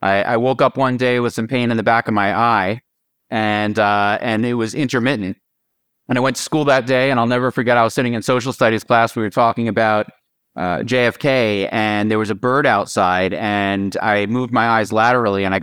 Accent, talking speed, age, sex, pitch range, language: American, 225 wpm, 30-49, male, 110-130 Hz, English